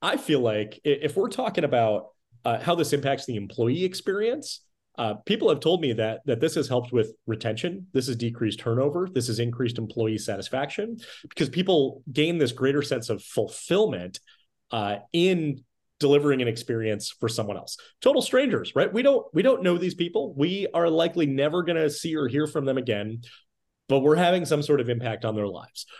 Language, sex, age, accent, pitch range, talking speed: English, male, 30-49, American, 115-165 Hz, 190 wpm